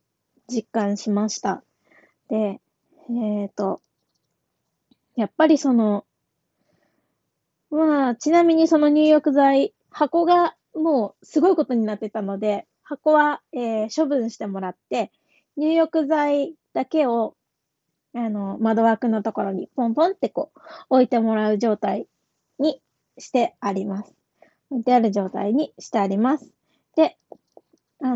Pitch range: 215-300 Hz